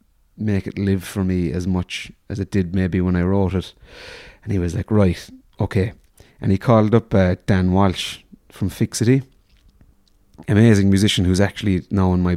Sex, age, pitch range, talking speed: male, 30-49, 90-105 Hz, 180 wpm